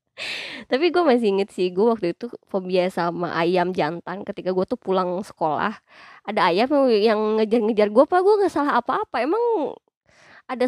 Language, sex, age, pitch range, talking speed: Indonesian, female, 20-39, 185-260 Hz, 155 wpm